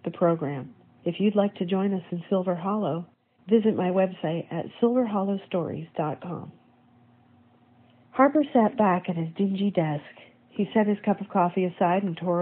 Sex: female